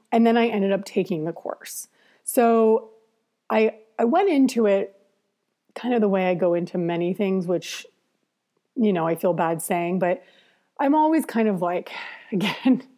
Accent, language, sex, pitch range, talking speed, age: American, English, female, 190-235 Hz, 170 wpm, 30-49